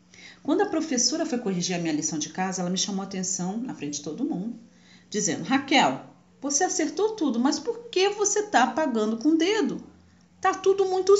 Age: 40-59